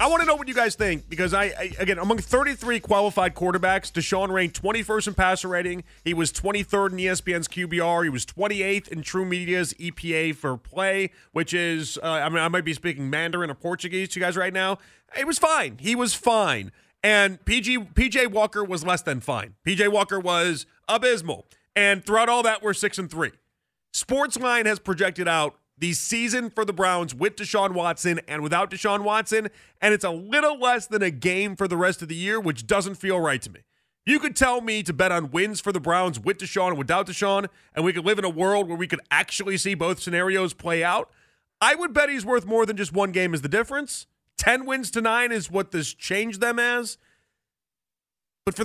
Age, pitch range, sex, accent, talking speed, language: 30-49, 175-225 Hz, male, American, 215 wpm, English